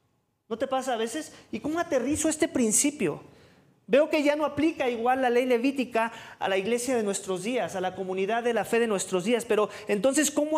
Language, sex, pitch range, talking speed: English, male, 220-285 Hz, 210 wpm